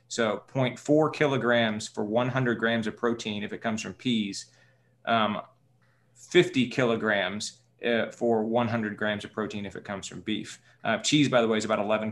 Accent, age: American, 30-49